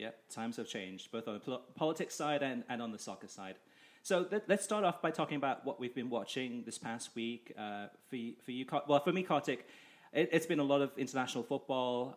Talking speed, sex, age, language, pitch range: 240 wpm, male, 30-49, English, 110-145 Hz